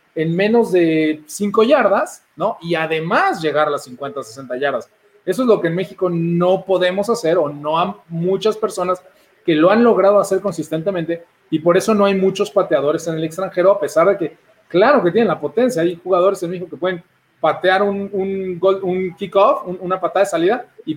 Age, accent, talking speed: 30-49, Mexican, 205 wpm